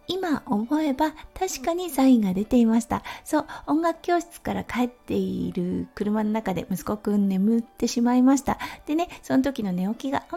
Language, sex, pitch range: Japanese, female, 210-295 Hz